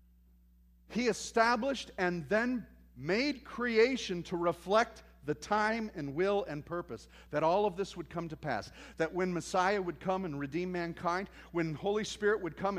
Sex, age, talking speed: male, 40-59, 165 wpm